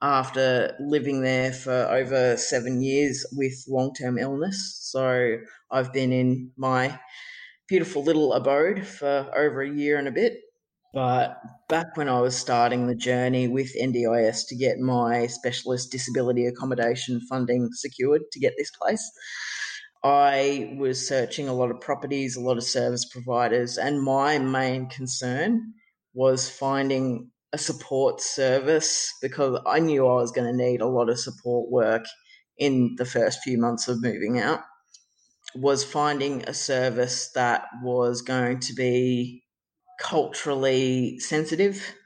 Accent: Australian